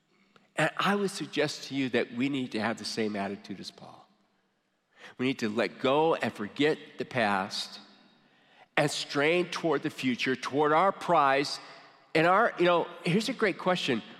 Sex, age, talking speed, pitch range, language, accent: male, 50-69, 175 wpm, 110-145 Hz, English, American